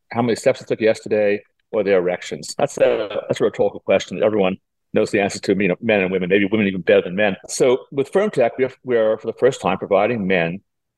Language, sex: English, male